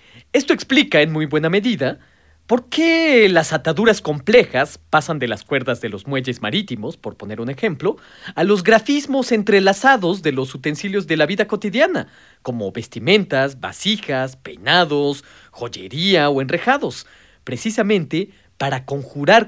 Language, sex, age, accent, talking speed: Spanish, male, 40-59, Mexican, 135 wpm